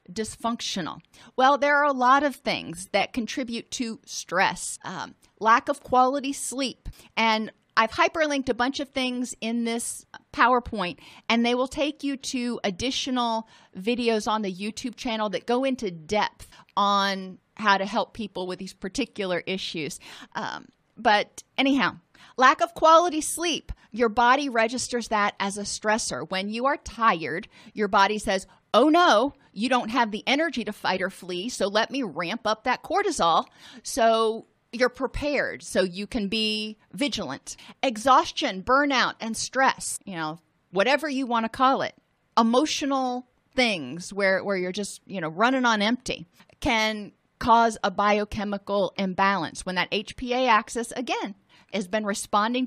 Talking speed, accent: 155 wpm, American